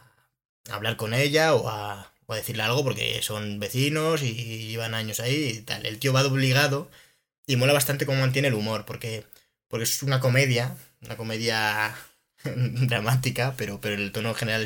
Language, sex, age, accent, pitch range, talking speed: Spanish, male, 20-39, Spanish, 110-130 Hz, 180 wpm